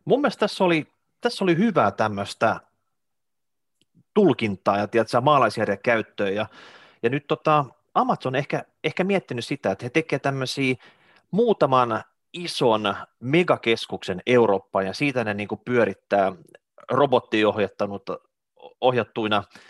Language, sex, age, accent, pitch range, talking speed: Finnish, male, 30-49, native, 105-155 Hz, 115 wpm